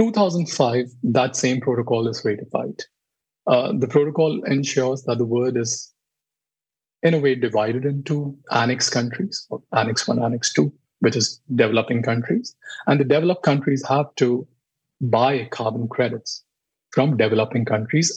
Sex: male